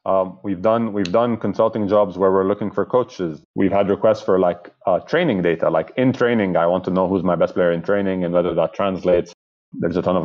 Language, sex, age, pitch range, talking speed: English, male, 30-49, 90-120 Hz, 240 wpm